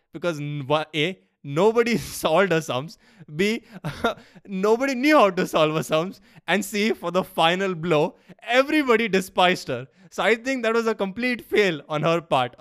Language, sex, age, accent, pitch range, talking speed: English, male, 20-39, Indian, 150-195 Hz, 160 wpm